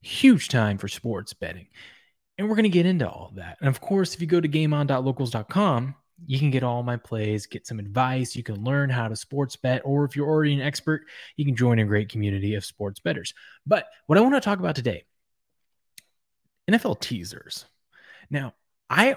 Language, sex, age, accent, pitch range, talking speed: English, male, 20-39, American, 115-160 Hz, 200 wpm